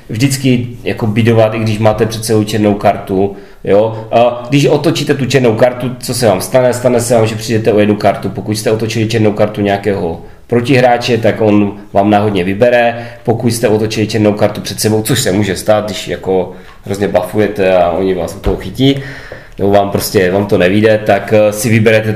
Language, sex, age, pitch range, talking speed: Czech, male, 30-49, 100-120 Hz, 190 wpm